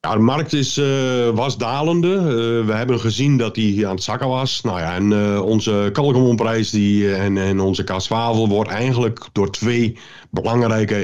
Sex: male